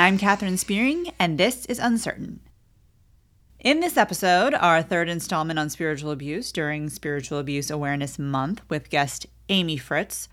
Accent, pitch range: American, 155-210 Hz